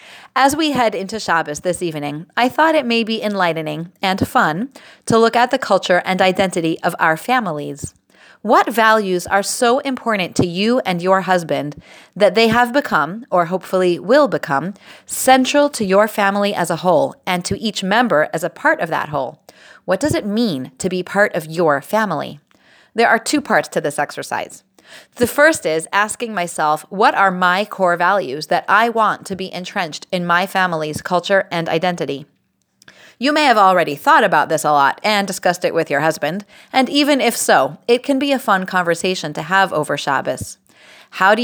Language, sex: English, female